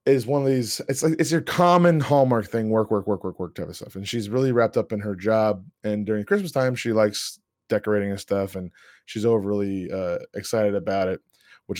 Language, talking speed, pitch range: English, 225 wpm, 100-125 Hz